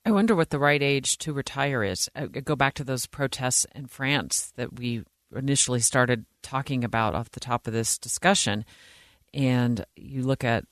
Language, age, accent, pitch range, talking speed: English, 40-59, American, 115-145 Hz, 185 wpm